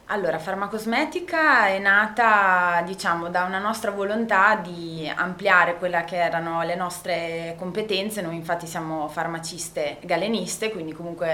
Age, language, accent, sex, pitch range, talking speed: 20-39, Italian, native, female, 165-195 Hz, 125 wpm